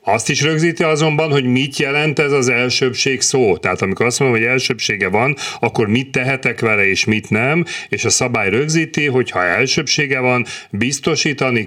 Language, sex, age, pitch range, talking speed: Hungarian, male, 40-59, 105-135 Hz, 175 wpm